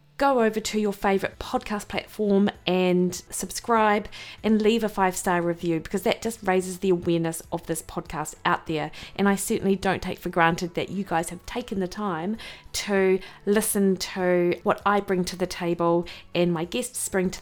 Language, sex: English, female